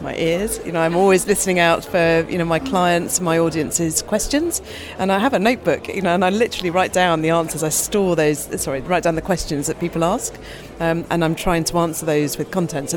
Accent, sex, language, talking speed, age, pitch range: British, female, Romanian, 235 wpm, 40-59, 155-185 Hz